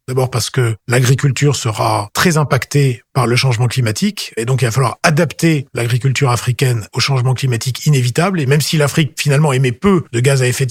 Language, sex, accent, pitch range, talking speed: French, male, French, 125-155 Hz, 190 wpm